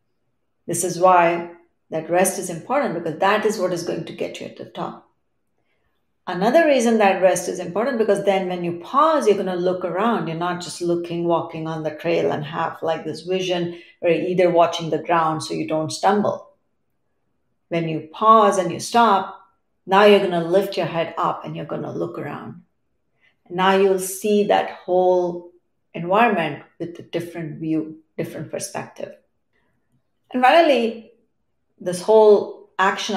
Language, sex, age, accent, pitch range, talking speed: English, female, 50-69, Indian, 170-205 Hz, 170 wpm